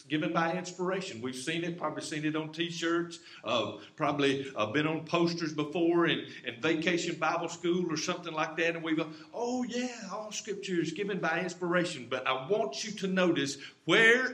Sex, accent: male, American